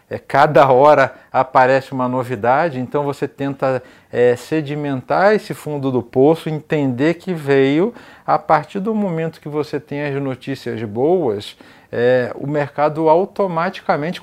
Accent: Brazilian